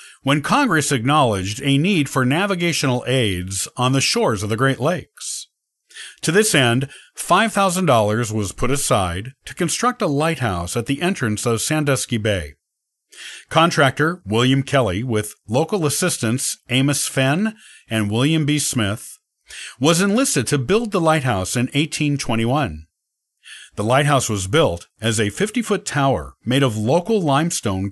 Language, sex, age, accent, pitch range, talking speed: English, male, 50-69, American, 115-155 Hz, 140 wpm